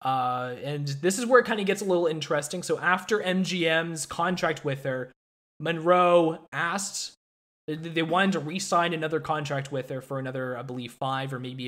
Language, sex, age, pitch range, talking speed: English, male, 20-39, 135-175 Hz, 180 wpm